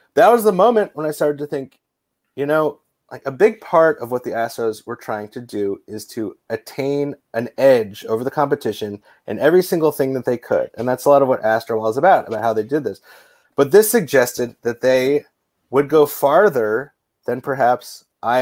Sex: male